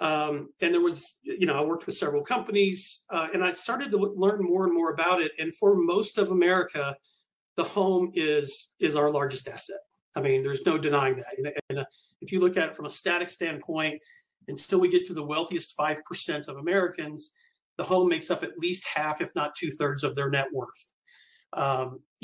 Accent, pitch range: American, 150-205 Hz